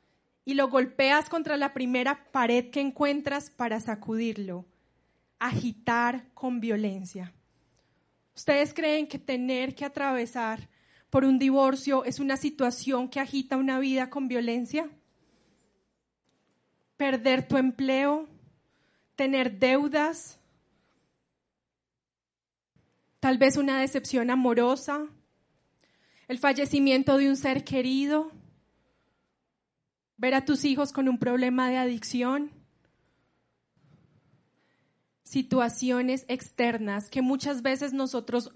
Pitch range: 250-280 Hz